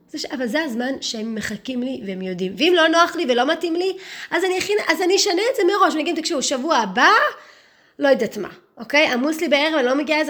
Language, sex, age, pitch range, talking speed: Hebrew, female, 20-39, 245-325 Hz, 220 wpm